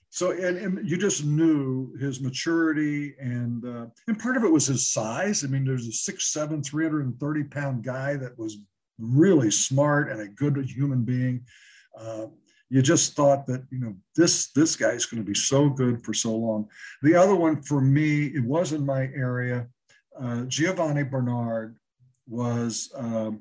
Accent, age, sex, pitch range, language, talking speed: American, 60-79, male, 120-145 Hz, English, 175 wpm